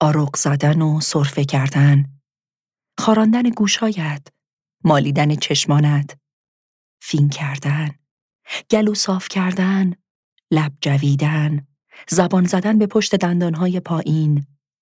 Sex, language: female, Persian